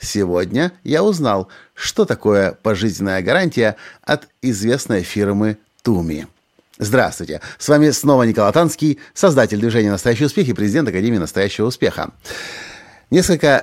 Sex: male